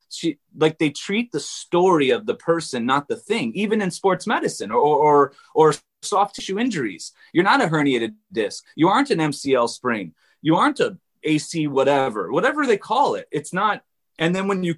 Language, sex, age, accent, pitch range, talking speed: English, male, 30-49, American, 150-225 Hz, 190 wpm